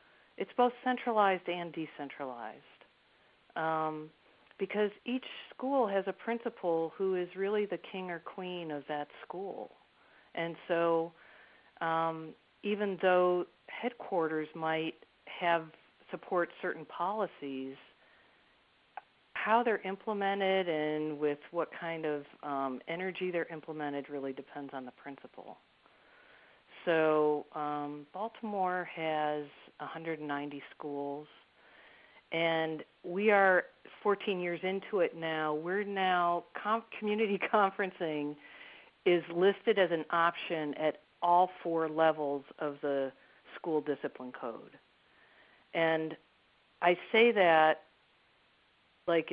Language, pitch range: English, 150-185 Hz